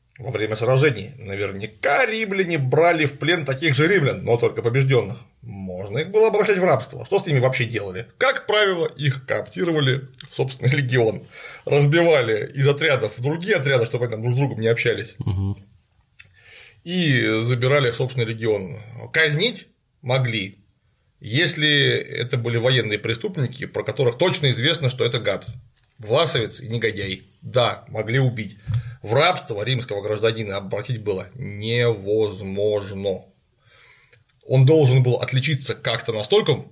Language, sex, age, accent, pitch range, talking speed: Russian, male, 30-49, native, 110-145 Hz, 135 wpm